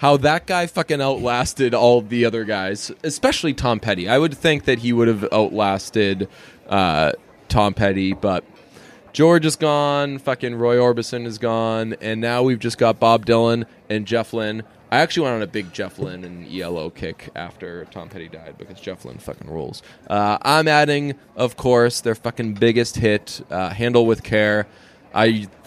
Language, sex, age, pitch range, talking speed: English, male, 20-39, 105-130 Hz, 180 wpm